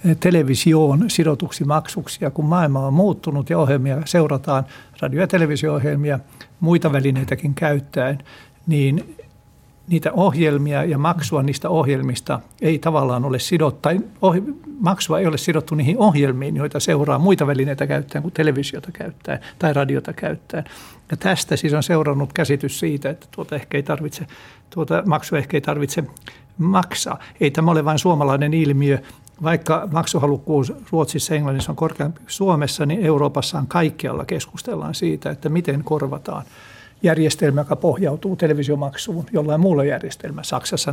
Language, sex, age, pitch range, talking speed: Finnish, male, 60-79, 140-170 Hz, 135 wpm